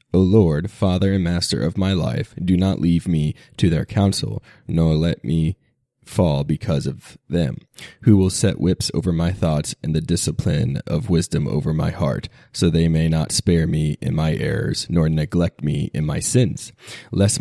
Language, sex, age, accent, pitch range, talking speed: English, male, 20-39, American, 85-100 Hz, 185 wpm